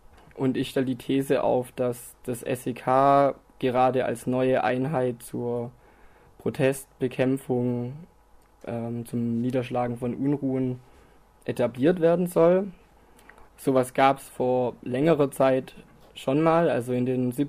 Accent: German